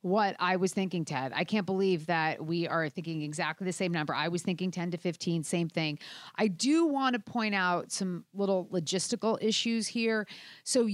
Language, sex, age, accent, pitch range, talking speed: English, female, 40-59, American, 165-215 Hz, 195 wpm